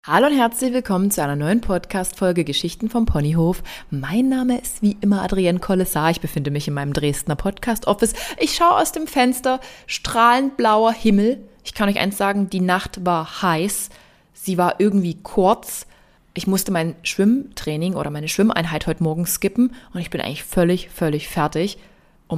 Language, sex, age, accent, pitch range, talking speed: German, female, 20-39, German, 170-230 Hz, 170 wpm